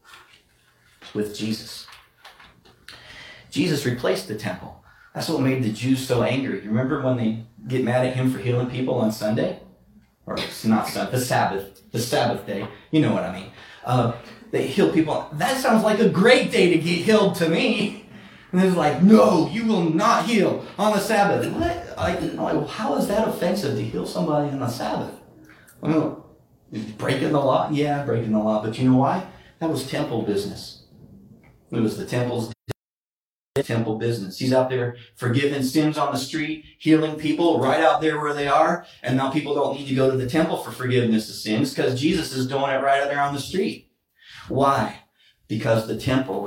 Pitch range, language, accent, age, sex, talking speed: 110-155 Hz, English, American, 40-59, male, 190 wpm